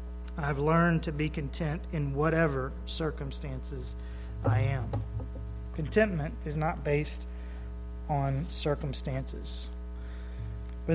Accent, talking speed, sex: American, 95 wpm, male